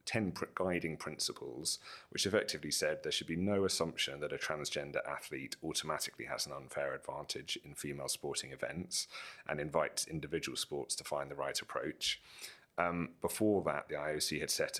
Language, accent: English, British